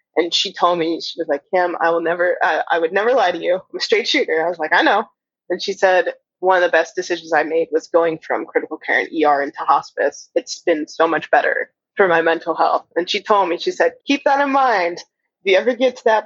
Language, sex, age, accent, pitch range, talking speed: English, female, 20-39, American, 165-270 Hz, 260 wpm